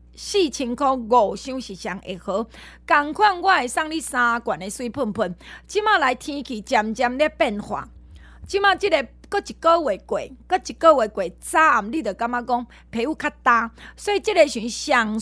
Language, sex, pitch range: Chinese, female, 225-320 Hz